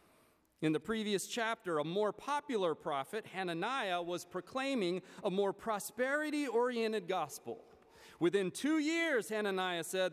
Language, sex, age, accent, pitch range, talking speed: English, male, 40-59, American, 195-280 Hz, 120 wpm